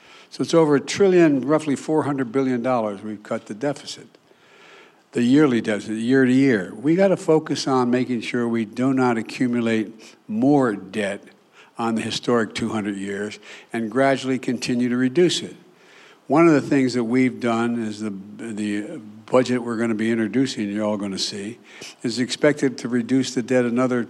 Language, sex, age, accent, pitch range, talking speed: English, male, 60-79, American, 115-140 Hz, 175 wpm